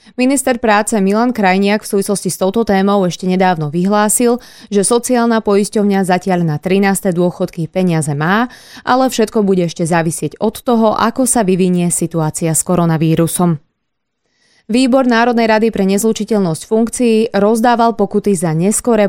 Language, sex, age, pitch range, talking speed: Slovak, female, 20-39, 180-225 Hz, 140 wpm